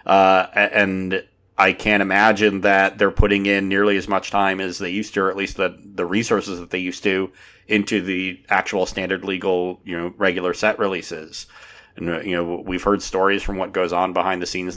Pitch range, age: 90-100 Hz, 30-49